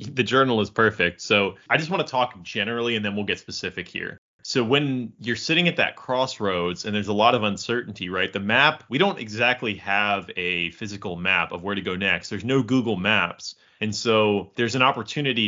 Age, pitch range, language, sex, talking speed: 30-49, 105-140 Hz, English, male, 210 wpm